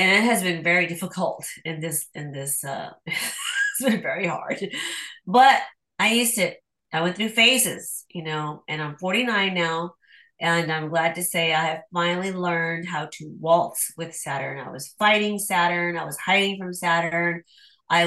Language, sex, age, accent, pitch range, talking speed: English, female, 30-49, American, 165-210 Hz, 175 wpm